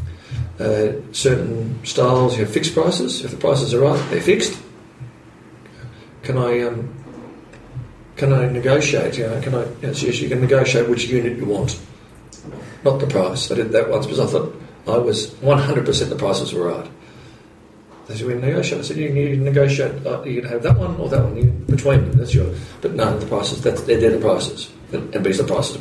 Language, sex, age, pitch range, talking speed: English, male, 40-59, 105-135 Hz, 195 wpm